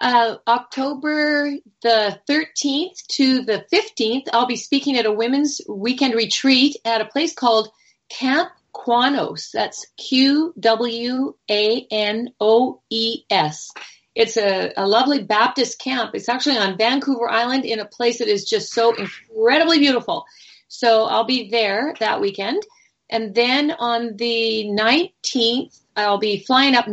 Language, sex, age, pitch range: English, female, 40-59, 220-270 Hz